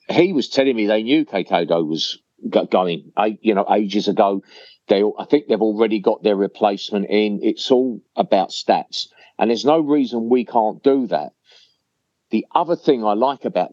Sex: male